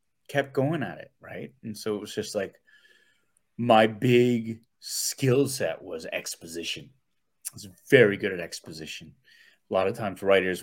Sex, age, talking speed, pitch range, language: male, 30-49, 160 wpm, 105-140 Hz, English